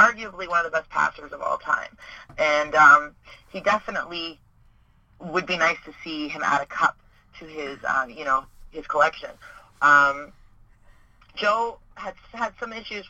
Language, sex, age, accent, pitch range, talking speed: English, female, 30-49, American, 150-195 Hz, 160 wpm